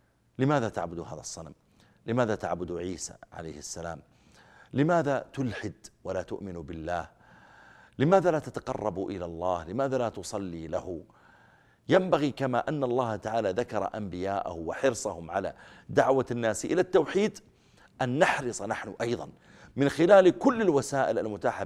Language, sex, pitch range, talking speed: Arabic, male, 95-130 Hz, 125 wpm